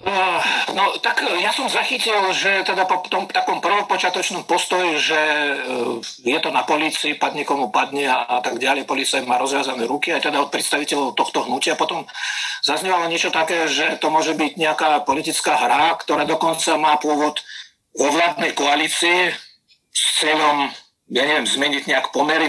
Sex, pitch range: male, 145-170 Hz